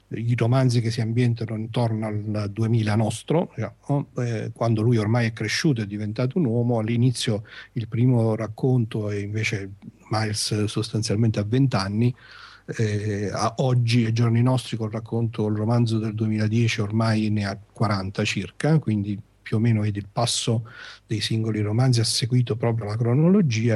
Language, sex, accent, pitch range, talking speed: Italian, male, native, 105-125 Hz, 165 wpm